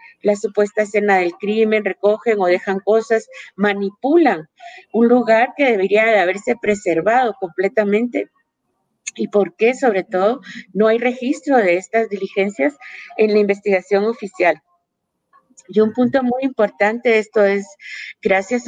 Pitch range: 185-230 Hz